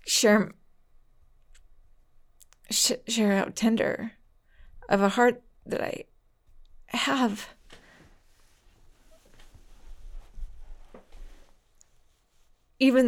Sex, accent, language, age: female, American, English, 30-49